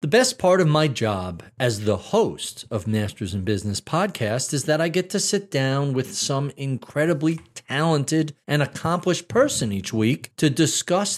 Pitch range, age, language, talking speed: 125-185 Hz, 50-69, English, 170 wpm